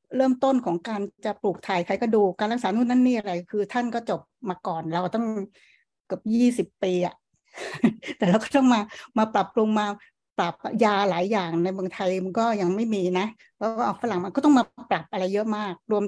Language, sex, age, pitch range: Thai, female, 60-79, 190-235 Hz